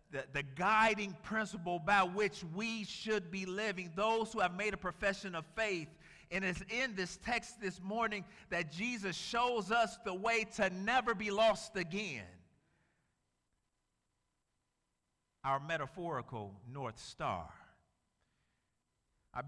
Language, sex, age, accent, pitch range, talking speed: English, male, 50-69, American, 150-210 Hz, 125 wpm